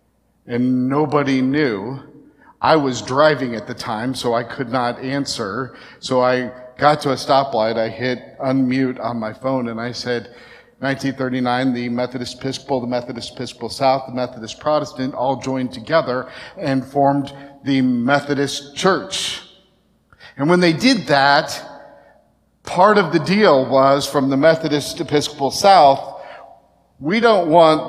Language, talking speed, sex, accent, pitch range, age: English, 140 wpm, male, American, 125-145 Hz, 50-69